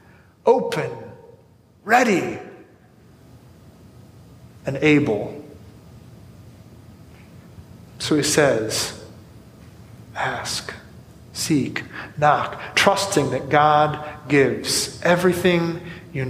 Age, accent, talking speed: 30-49, American, 60 wpm